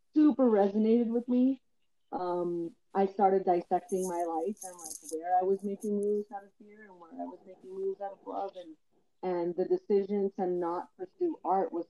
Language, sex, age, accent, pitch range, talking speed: English, female, 30-49, American, 170-215 Hz, 190 wpm